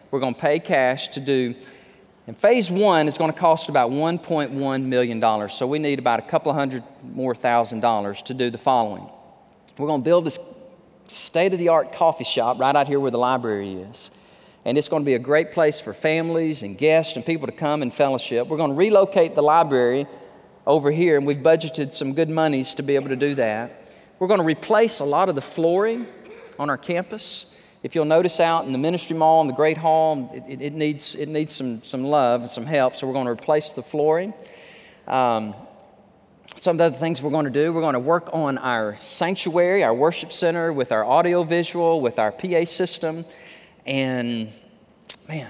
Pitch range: 130-165 Hz